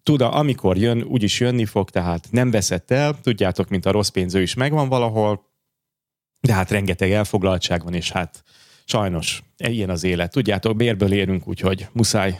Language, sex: Hungarian, male